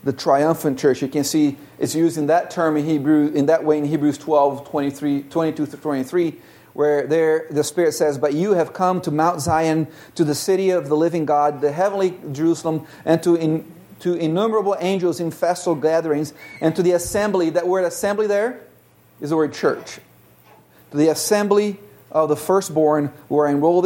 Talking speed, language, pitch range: 180 wpm, English, 145-175 Hz